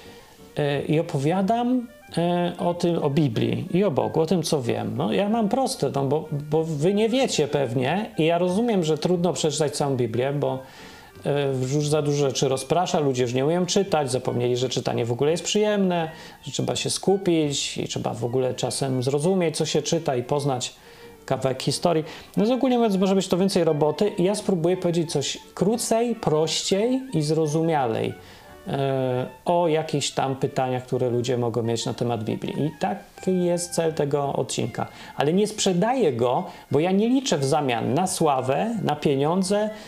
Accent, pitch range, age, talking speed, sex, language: native, 140-180 Hz, 40-59, 175 wpm, male, Polish